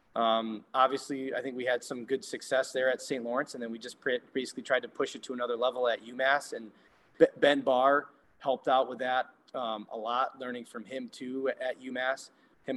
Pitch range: 120-140 Hz